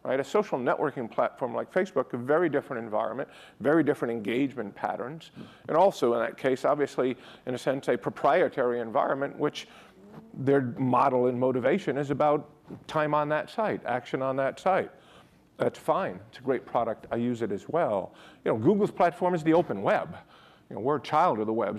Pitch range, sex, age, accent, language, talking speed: 120-150 Hz, male, 50-69, American, English, 185 wpm